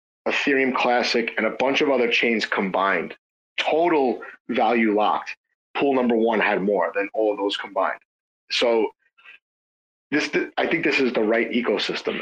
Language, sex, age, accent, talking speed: English, male, 30-49, American, 155 wpm